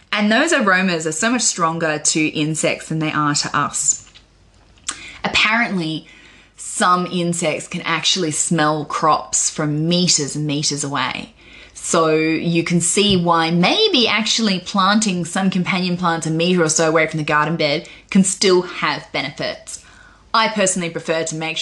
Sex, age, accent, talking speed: female, 20-39, Australian, 155 wpm